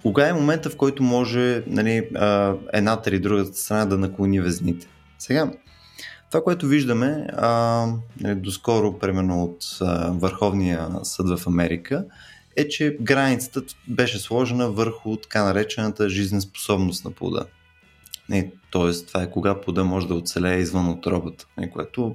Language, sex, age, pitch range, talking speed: Bulgarian, male, 20-39, 90-120 Hz, 145 wpm